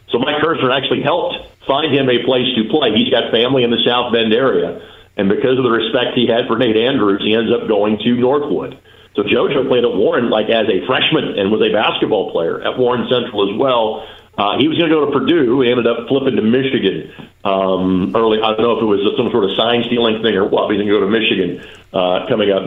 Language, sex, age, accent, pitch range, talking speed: English, male, 50-69, American, 110-135 Hz, 245 wpm